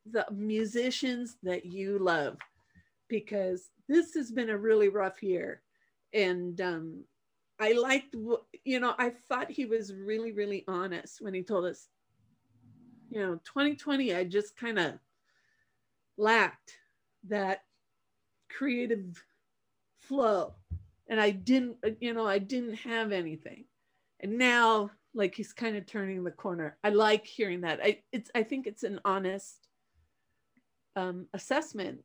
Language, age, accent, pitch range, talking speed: English, 40-59, American, 190-240 Hz, 135 wpm